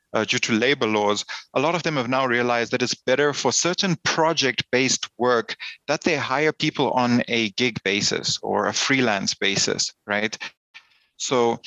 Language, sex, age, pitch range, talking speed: English, male, 30-49, 115-135 Hz, 170 wpm